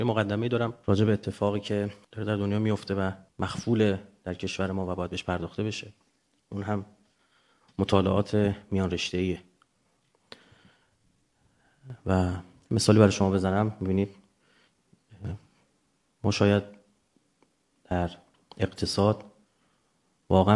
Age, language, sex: 30-49, Persian, male